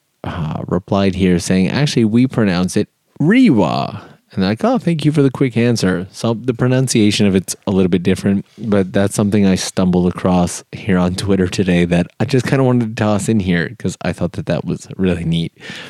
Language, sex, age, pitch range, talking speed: English, male, 30-49, 90-115 Hz, 210 wpm